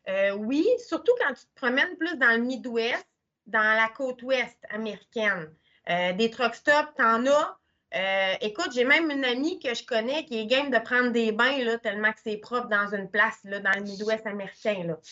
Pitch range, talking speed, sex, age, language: 220-280 Hz, 200 wpm, female, 20-39, French